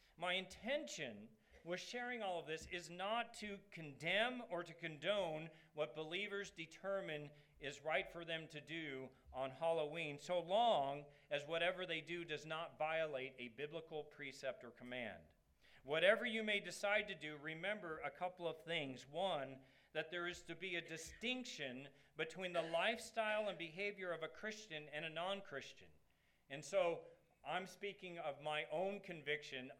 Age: 40-59